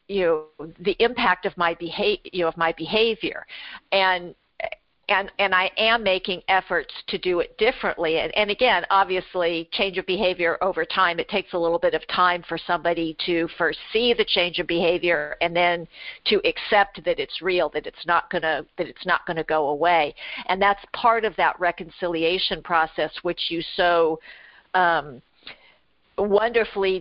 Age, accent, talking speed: 50-69, American, 175 wpm